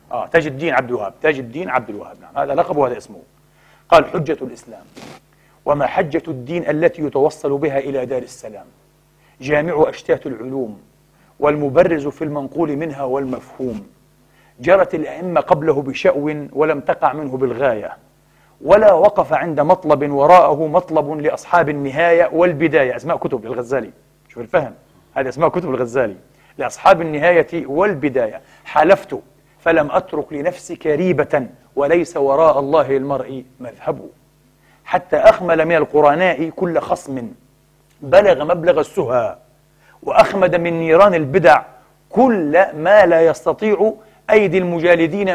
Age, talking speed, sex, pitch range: 40-59, 120 wpm, male, 145-175 Hz